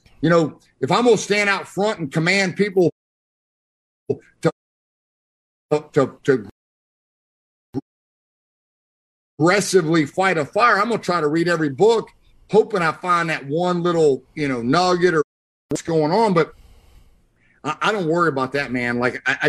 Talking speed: 155 wpm